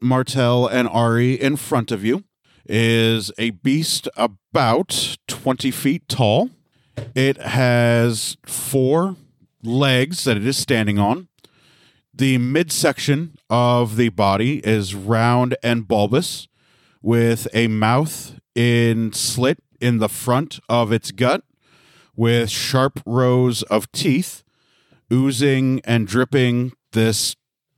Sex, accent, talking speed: male, American, 110 wpm